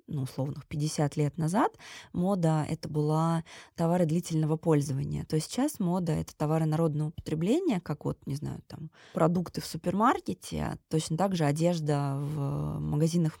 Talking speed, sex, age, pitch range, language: 150 wpm, female, 20-39, 150-170 Hz, Russian